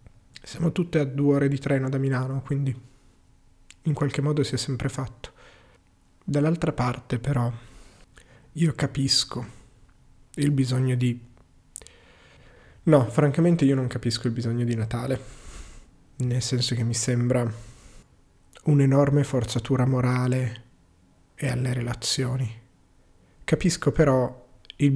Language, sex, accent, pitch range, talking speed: Italian, male, native, 120-140 Hz, 115 wpm